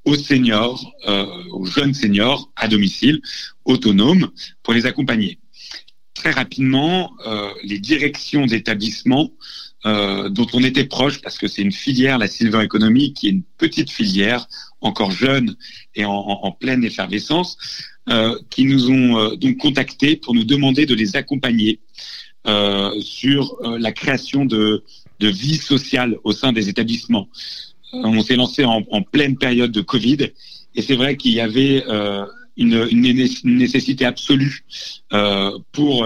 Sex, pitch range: male, 110-135 Hz